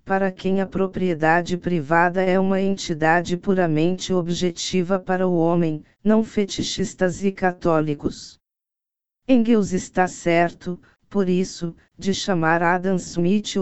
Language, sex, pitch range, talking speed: English, female, 170-190 Hz, 115 wpm